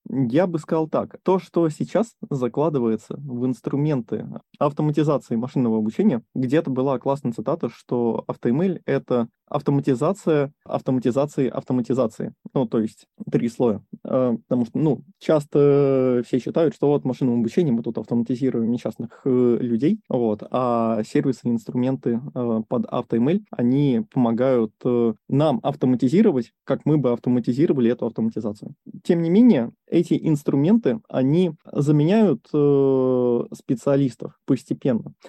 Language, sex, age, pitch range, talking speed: Russian, male, 20-39, 125-155 Hz, 120 wpm